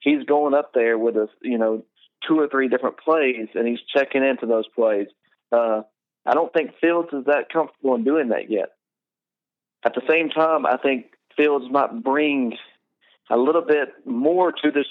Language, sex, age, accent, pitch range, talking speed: English, male, 40-59, American, 120-145 Hz, 185 wpm